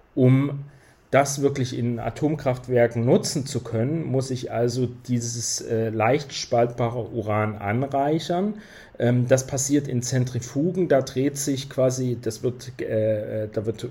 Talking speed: 120 wpm